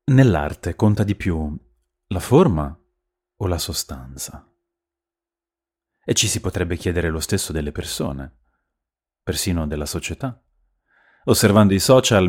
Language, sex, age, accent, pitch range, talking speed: Italian, male, 30-49, native, 80-110 Hz, 115 wpm